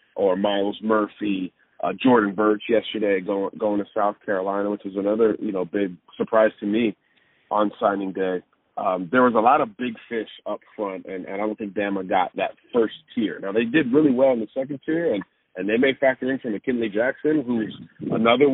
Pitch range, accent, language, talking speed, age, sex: 105-125 Hz, American, English, 205 wpm, 30-49, male